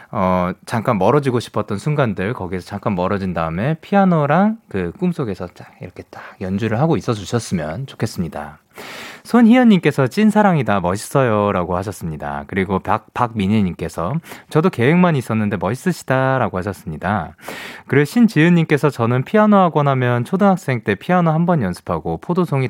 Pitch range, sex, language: 95-155 Hz, male, Korean